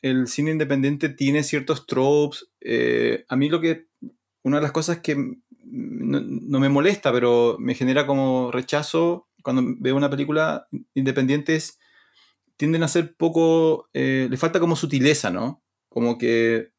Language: Spanish